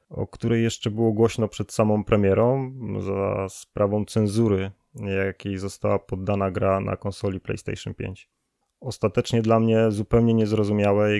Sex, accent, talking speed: male, native, 130 wpm